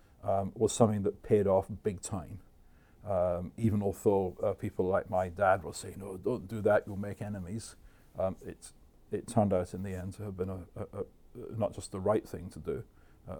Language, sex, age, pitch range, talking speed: English, male, 50-69, 90-110 Hz, 195 wpm